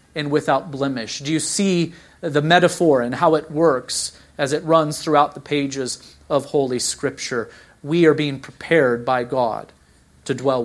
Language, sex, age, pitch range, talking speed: English, male, 40-59, 145-180 Hz, 165 wpm